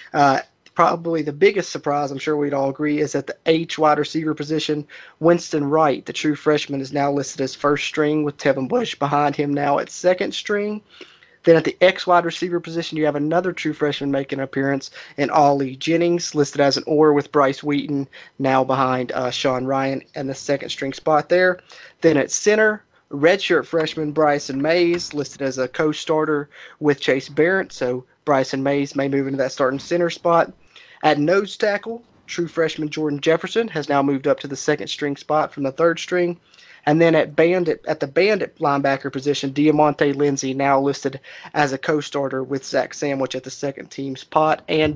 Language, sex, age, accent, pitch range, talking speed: English, male, 30-49, American, 140-160 Hz, 190 wpm